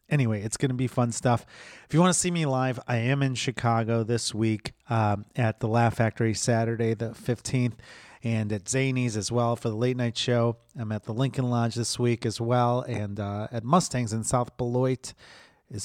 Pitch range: 115-135 Hz